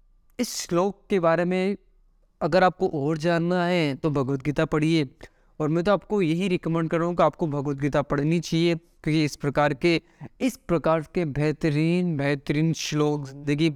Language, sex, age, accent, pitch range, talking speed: Hindi, male, 20-39, native, 145-175 Hz, 165 wpm